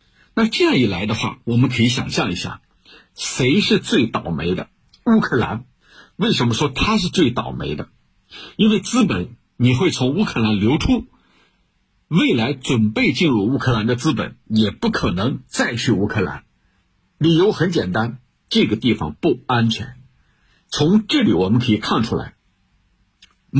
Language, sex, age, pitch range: Chinese, male, 60-79, 110-155 Hz